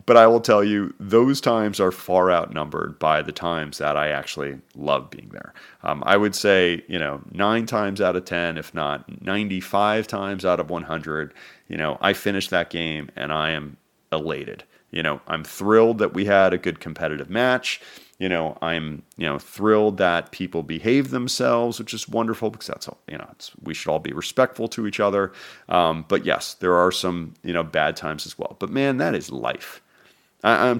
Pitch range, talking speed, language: 90-115 Hz, 200 wpm, English